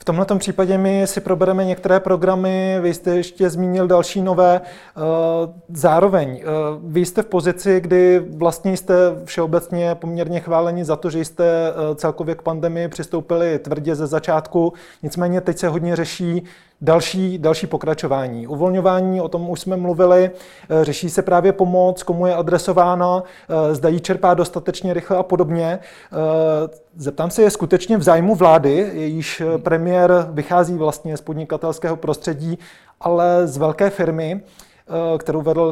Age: 30-49